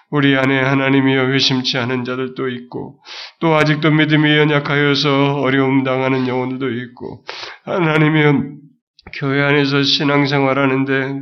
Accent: native